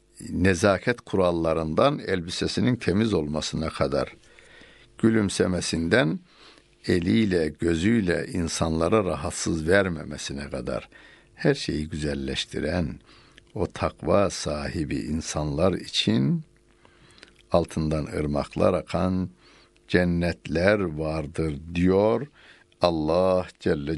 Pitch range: 80-105 Hz